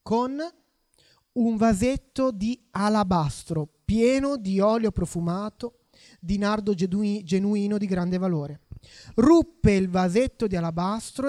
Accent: native